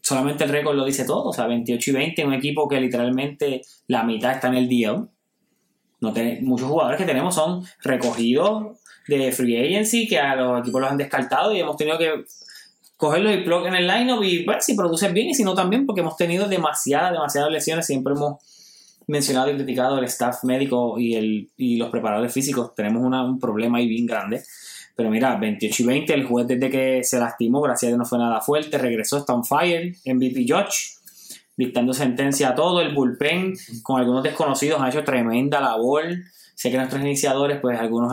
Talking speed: 200 wpm